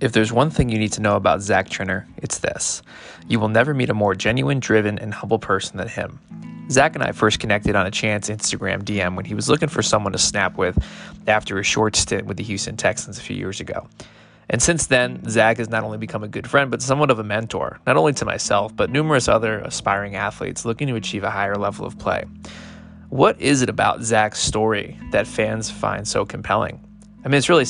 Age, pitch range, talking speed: 20-39, 100-125 Hz, 225 wpm